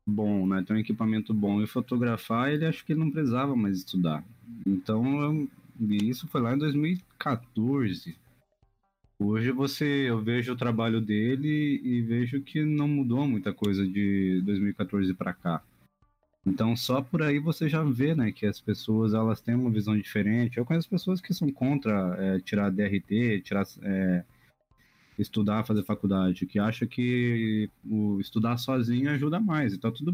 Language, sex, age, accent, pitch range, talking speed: Portuguese, male, 20-39, Brazilian, 105-135 Hz, 160 wpm